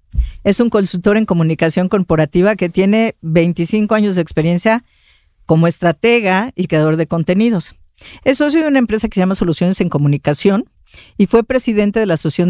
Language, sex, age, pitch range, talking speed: Spanish, female, 50-69, 150-210 Hz, 170 wpm